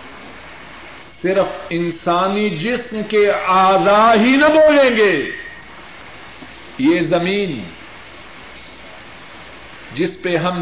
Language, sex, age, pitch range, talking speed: Urdu, male, 50-69, 170-230 Hz, 80 wpm